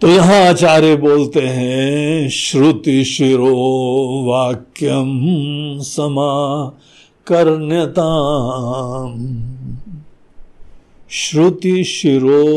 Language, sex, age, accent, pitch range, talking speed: Hindi, male, 60-79, native, 125-180 Hz, 50 wpm